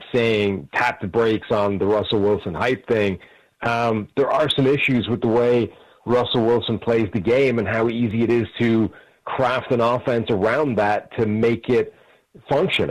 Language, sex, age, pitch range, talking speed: English, male, 40-59, 105-125 Hz, 175 wpm